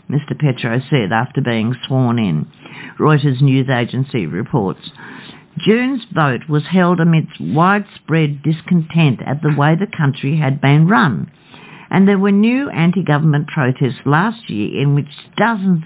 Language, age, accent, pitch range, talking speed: English, 60-79, Australian, 140-190 Hz, 140 wpm